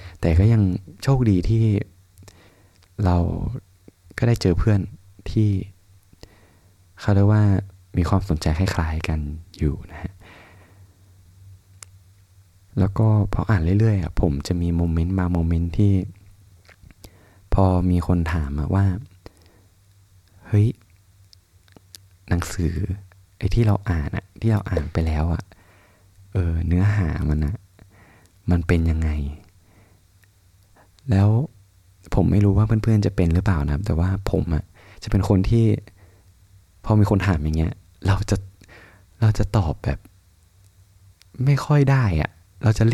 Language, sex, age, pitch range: Thai, male, 20-39, 90-100 Hz